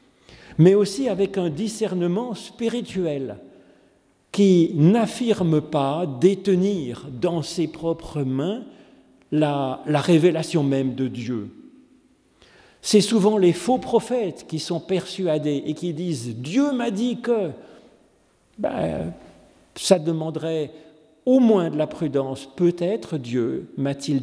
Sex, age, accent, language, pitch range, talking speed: male, 50-69, French, French, 140-195 Hz, 120 wpm